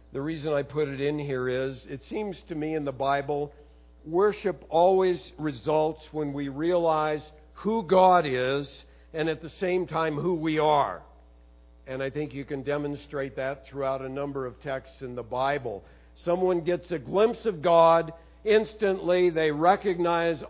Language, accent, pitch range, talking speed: English, American, 135-170 Hz, 165 wpm